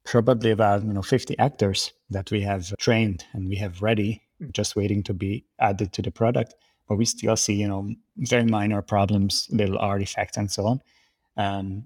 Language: English